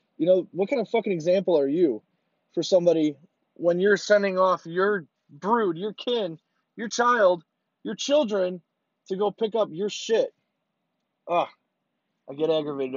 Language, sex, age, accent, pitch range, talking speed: English, male, 20-39, American, 160-215 Hz, 155 wpm